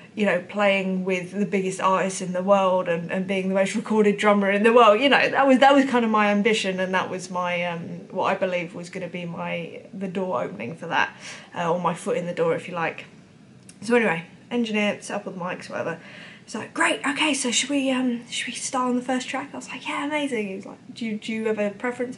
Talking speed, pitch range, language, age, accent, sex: 260 wpm, 190-240 Hz, English, 20-39, British, female